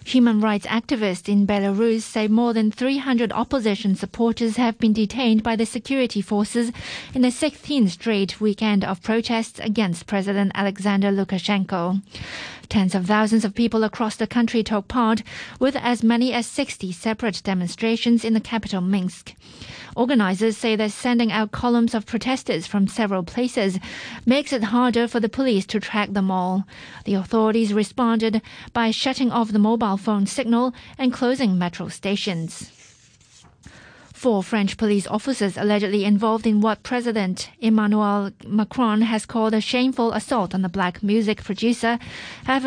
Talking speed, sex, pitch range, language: 150 wpm, female, 205-235 Hz, English